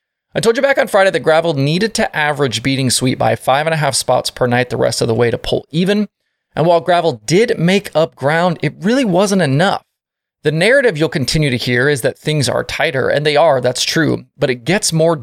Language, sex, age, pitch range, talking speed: English, male, 20-39, 130-185 Hz, 235 wpm